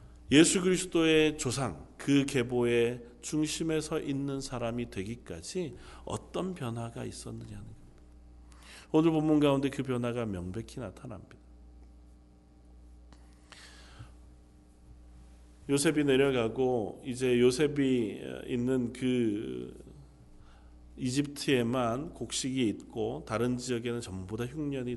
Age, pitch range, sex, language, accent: 40-59, 90-140 Hz, male, Korean, native